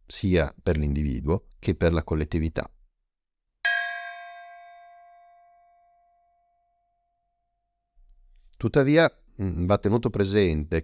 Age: 50-69